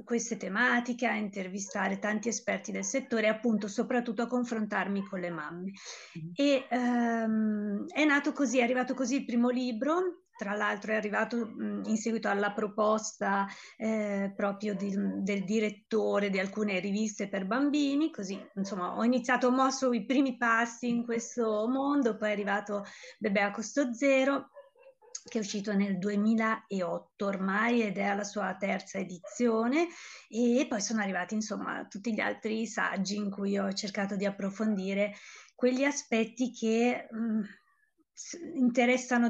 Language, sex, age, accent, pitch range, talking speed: Italian, female, 30-49, native, 205-245 Hz, 140 wpm